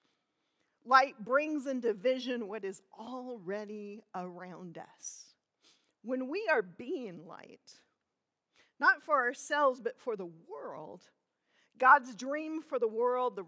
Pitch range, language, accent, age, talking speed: 195-255 Hz, English, American, 40-59, 120 wpm